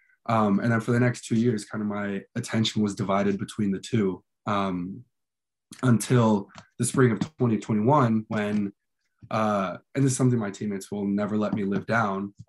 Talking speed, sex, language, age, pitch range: 180 wpm, male, English, 20-39, 100-120 Hz